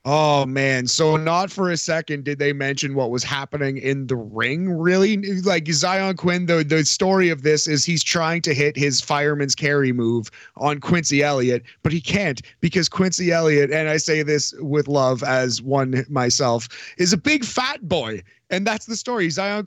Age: 30-49